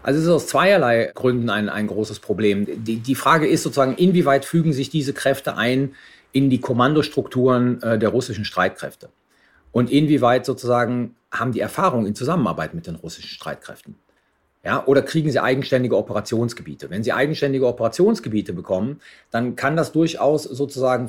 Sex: male